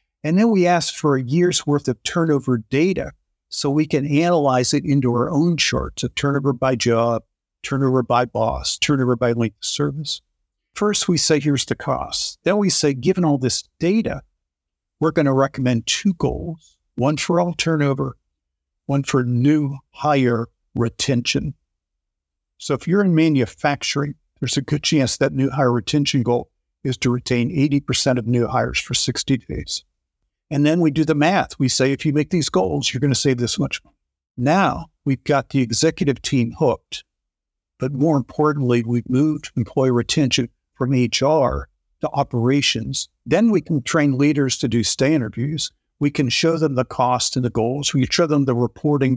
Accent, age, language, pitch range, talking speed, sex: American, 50-69, English, 120-150 Hz, 175 wpm, male